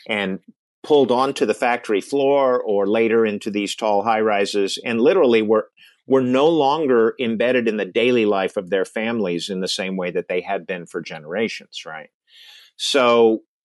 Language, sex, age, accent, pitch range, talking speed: English, male, 50-69, American, 110-140 Hz, 165 wpm